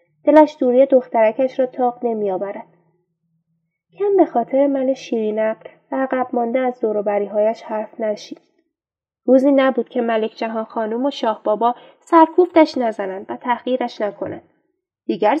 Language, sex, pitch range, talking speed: Persian, female, 205-300 Hz, 130 wpm